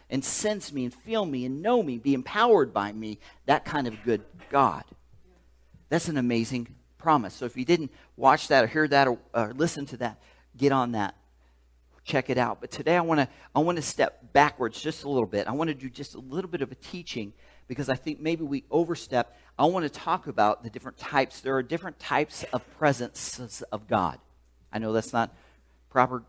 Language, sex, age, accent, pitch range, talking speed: English, male, 40-59, American, 100-140 Hz, 210 wpm